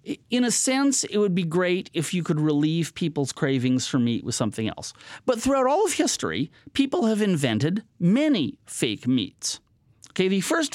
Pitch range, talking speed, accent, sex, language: 135-210 Hz, 180 wpm, American, male, English